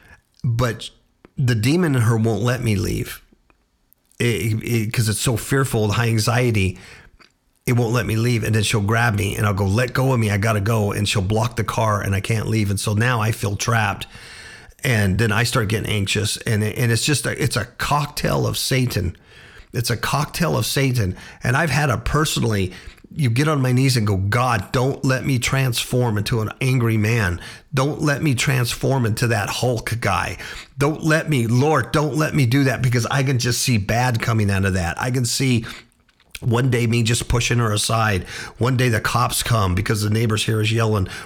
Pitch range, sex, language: 110-130 Hz, male, English